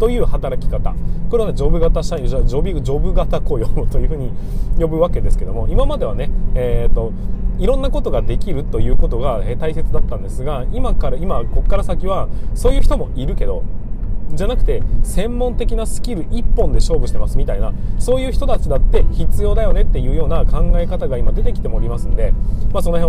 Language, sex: Japanese, male